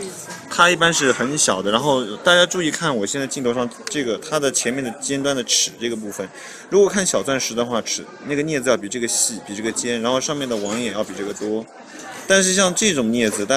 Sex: male